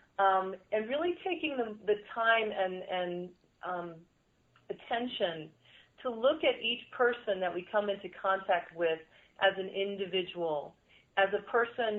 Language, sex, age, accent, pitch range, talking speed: English, female, 40-59, American, 185-220 Hz, 140 wpm